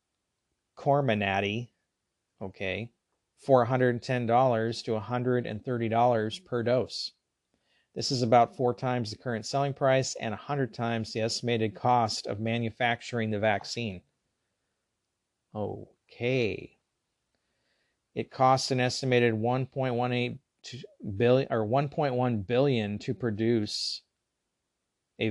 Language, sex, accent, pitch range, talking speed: English, male, American, 110-130 Hz, 90 wpm